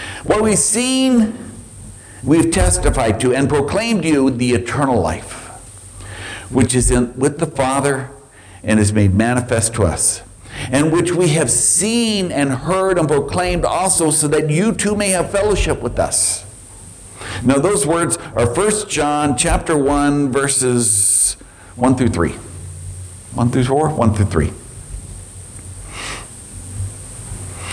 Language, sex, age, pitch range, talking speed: English, male, 60-79, 100-150 Hz, 130 wpm